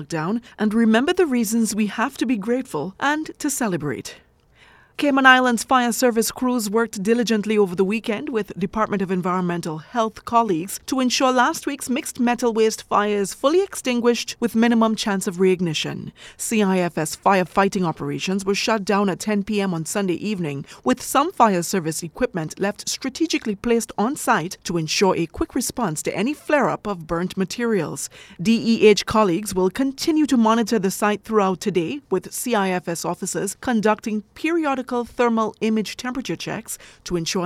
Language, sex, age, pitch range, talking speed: English, female, 30-49, 185-235 Hz, 160 wpm